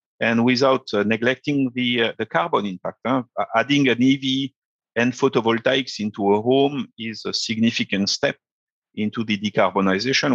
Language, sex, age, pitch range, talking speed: English, male, 50-69, 100-130 Hz, 145 wpm